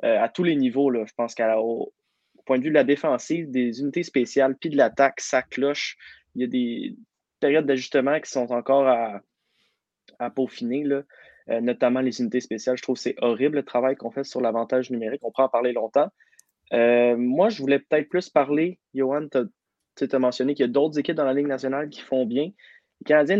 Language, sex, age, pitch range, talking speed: French, male, 20-39, 125-145 Hz, 215 wpm